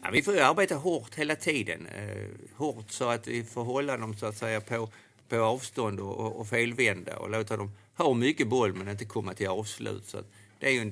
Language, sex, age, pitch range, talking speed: Swedish, male, 50-69, 105-115 Hz, 230 wpm